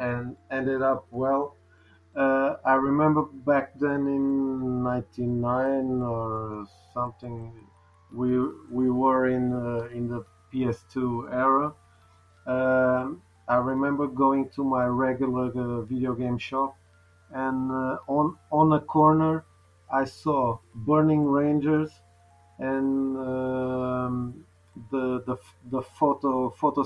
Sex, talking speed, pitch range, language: male, 115 wpm, 115-135 Hz, English